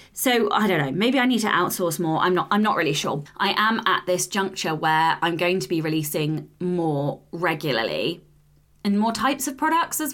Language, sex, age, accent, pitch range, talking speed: English, female, 20-39, British, 160-210 Hz, 205 wpm